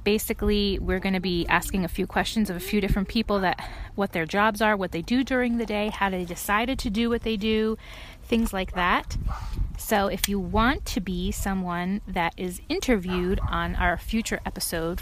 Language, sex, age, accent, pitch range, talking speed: English, female, 30-49, American, 170-235 Hz, 200 wpm